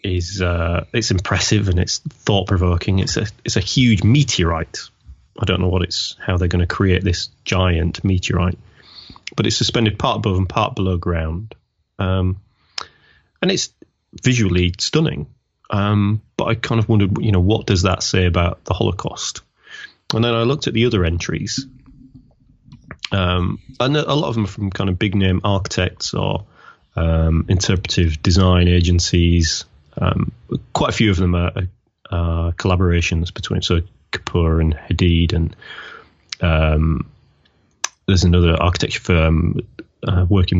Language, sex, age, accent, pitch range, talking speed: English, male, 30-49, British, 85-115 Hz, 155 wpm